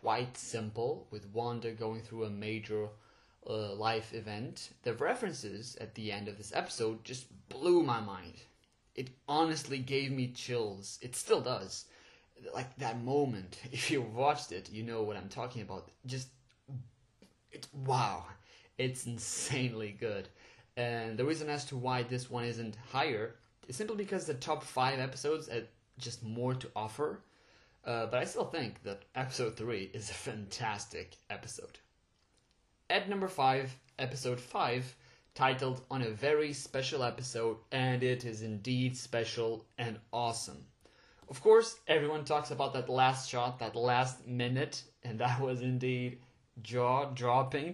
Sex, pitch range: male, 115-130 Hz